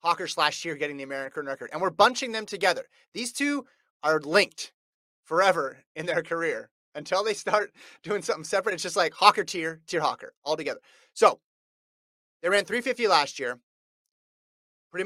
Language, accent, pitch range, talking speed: English, American, 145-205 Hz, 165 wpm